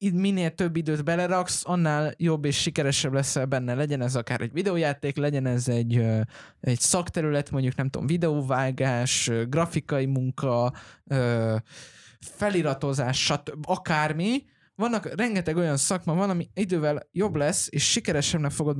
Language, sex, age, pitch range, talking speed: Hungarian, male, 20-39, 140-175 Hz, 130 wpm